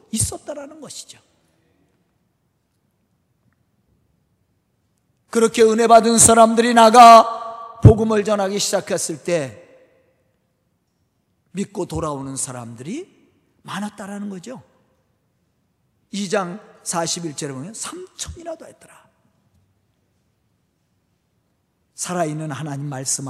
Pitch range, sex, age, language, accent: 190-310 Hz, male, 40-59, Korean, native